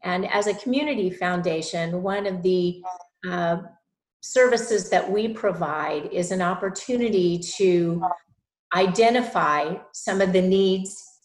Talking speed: 115 wpm